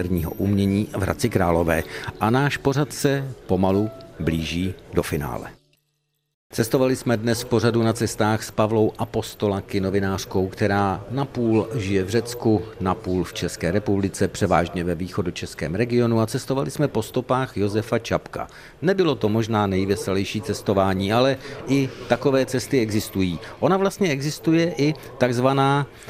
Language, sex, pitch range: Czech, male, 105-135 Hz